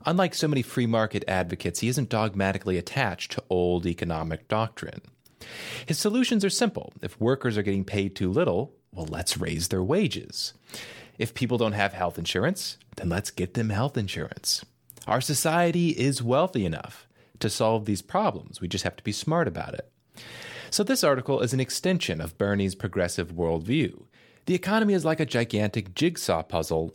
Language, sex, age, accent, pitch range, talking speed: English, male, 30-49, American, 100-155 Hz, 170 wpm